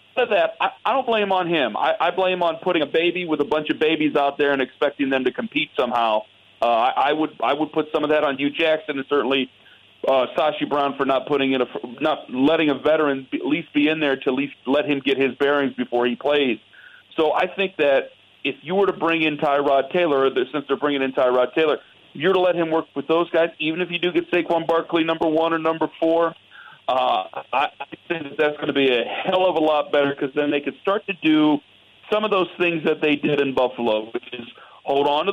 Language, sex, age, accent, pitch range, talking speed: English, male, 40-59, American, 135-170 Hz, 245 wpm